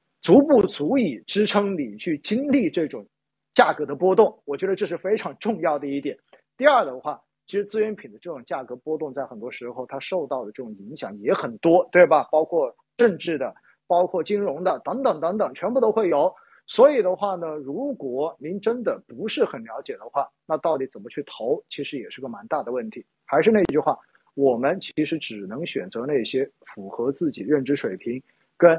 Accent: native